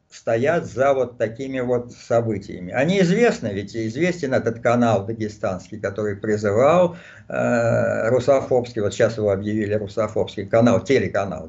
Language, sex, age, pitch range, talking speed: Russian, male, 50-69, 105-140 Hz, 125 wpm